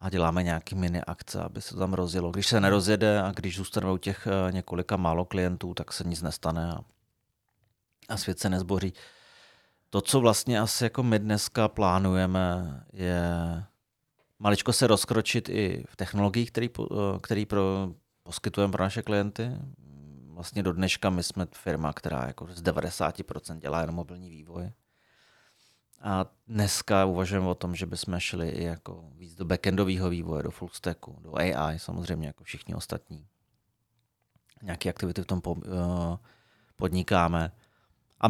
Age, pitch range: 30-49, 85-105 Hz